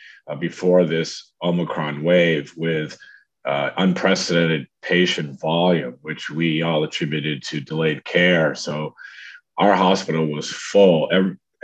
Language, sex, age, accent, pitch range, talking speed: English, male, 50-69, American, 80-90 Hz, 120 wpm